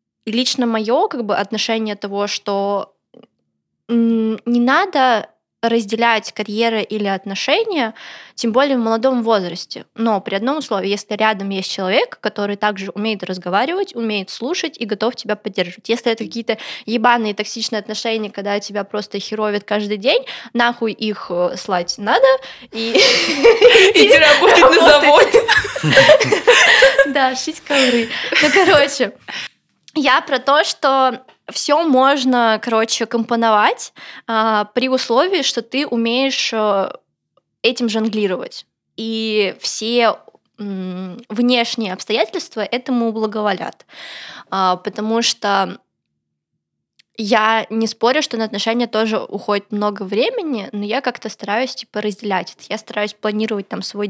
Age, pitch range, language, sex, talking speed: 20-39, 210-270 Hz, Russian, female, 125 wpm